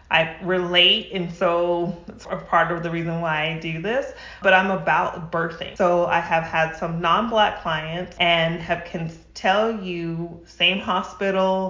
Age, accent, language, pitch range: 30-49, American, English, 170-220 Hz